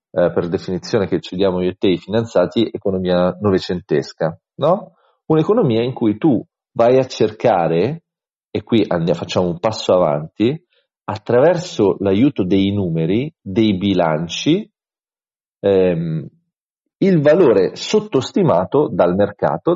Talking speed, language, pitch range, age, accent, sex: 115 wpm, Italian, 90-130 Hz, 40-59, native, male